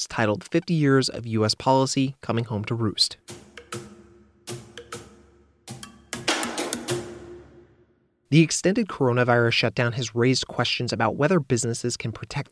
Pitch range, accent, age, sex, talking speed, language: 110-130 Hz, American, 30-49, male, 105 wpm, English